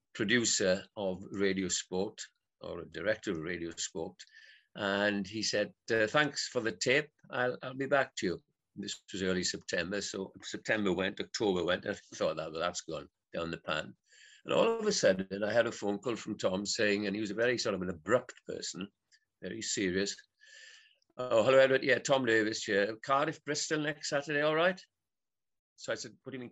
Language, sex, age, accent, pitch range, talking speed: English, male, 50-69, British, 100-135 Hz, 190 wpm